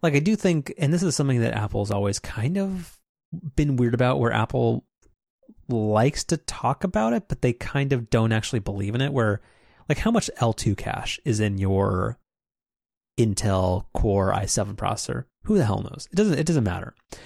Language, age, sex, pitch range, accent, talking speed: English, 30-49, male, 100-135 Hz, American, 190 wpm